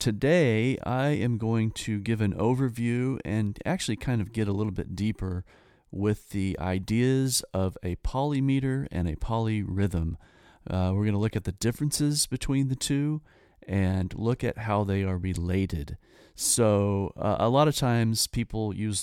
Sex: male